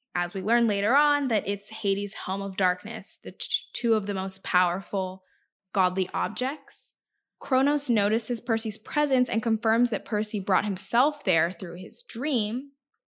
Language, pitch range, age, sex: English, 195-235 Hz, 10-29, female